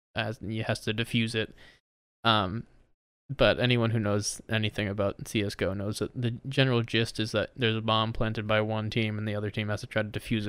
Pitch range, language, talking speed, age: 110-120 Hz, English, 210 wpm, 20-39